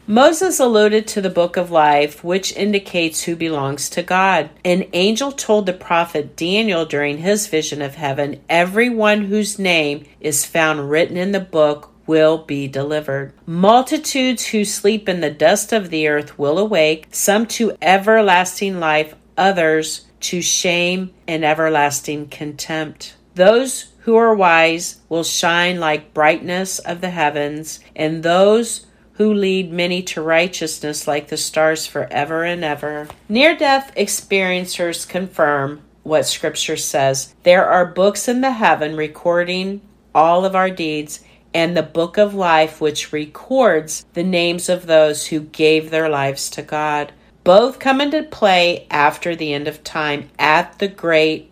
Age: 50-69